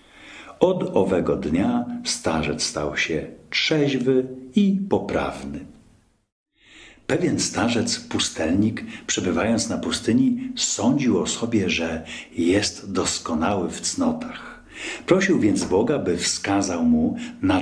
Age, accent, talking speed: 50-69, native, 100 wpm